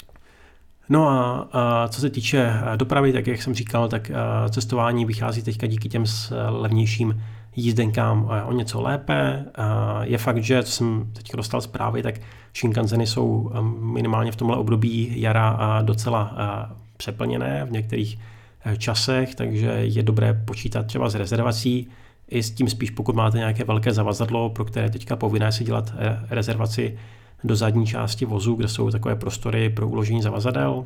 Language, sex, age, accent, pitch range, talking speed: Czech, male, 30-49, native, 110-120 Hz, 150 wpm